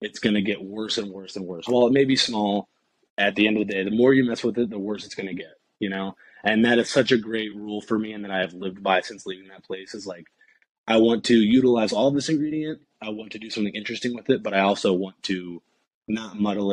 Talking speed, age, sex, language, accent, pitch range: 280 wpm, 20-39, male, English, American, 100-120 Hz